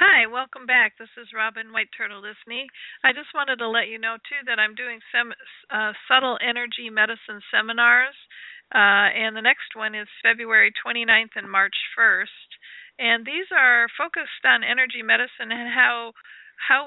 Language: English